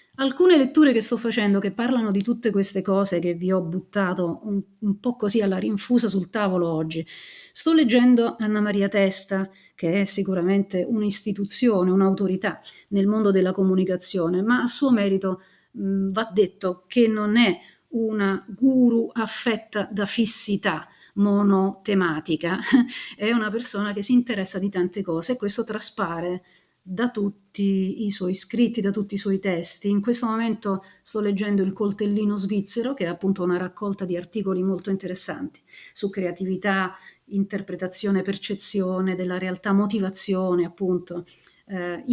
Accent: native